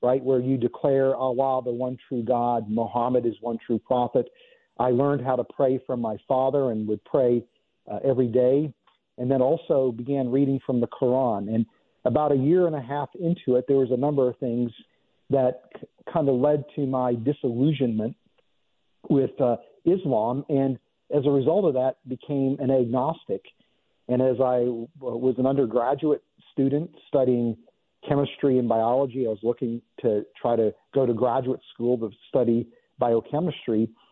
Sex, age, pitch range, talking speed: male, 50-69, 120-140 Hz, 170 wpm